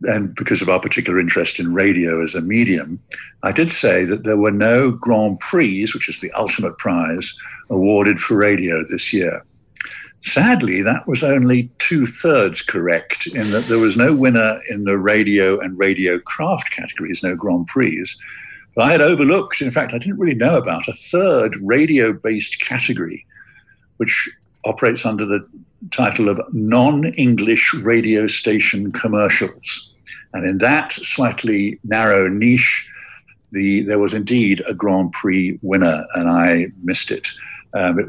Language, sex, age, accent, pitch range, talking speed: English, male, 50-69, British, 95-120 Hz, 150 wpm